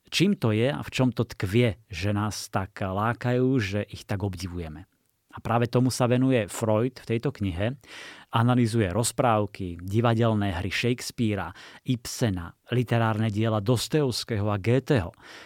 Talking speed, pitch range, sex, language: 140 wpm, 105-125 Hz, male, Slovak